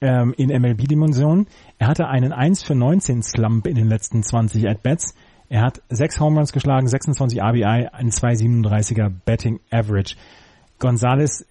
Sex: male